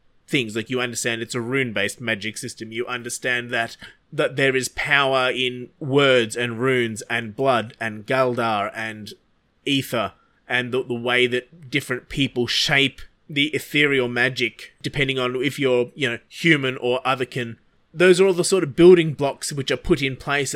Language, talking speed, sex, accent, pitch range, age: English, 170 wpm, male, Australian, 120-155 Hz, 20-39